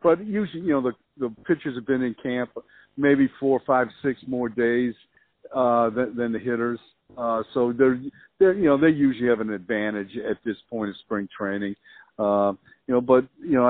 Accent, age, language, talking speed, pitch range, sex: American, 50-69, English, 200 wpm, 115-145 Hz, male